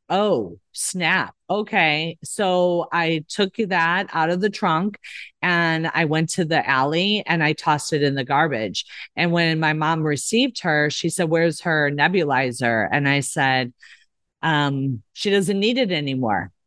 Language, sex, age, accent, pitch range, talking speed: English, female, 40-59, American, 145-180 Hz, 160 wpm